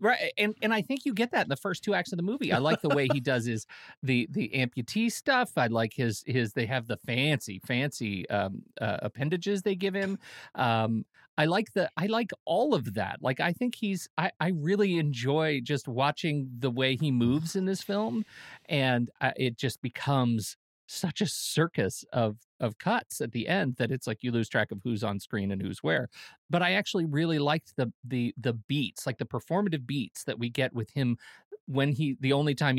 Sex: male